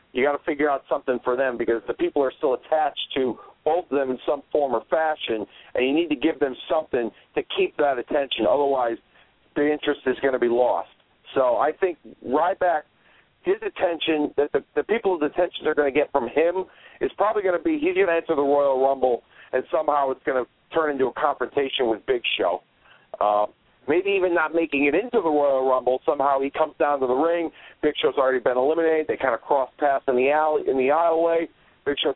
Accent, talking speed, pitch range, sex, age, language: American, 220 wpm, 130-165 Hz, male, 50-69, English